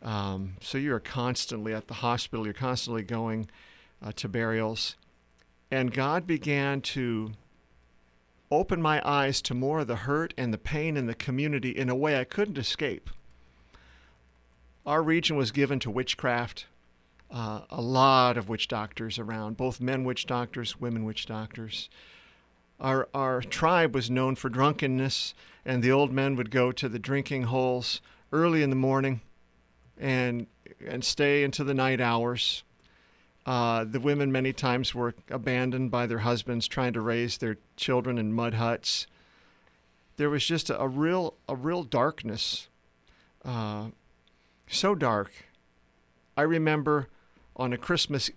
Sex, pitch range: male, 100-135 Hz